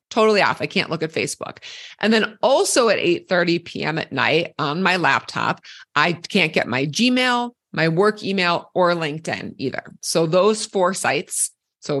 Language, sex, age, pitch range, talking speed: English, female, 30-49, 170-235 Hz, 170 wpm